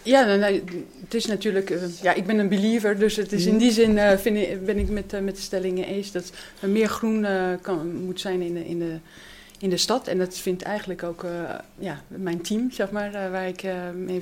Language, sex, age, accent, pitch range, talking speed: Dutch, female, 30-49, Dutch, 175-205 Hz, 220 wpm